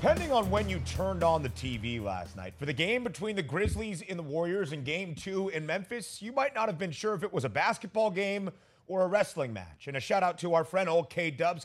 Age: 30-49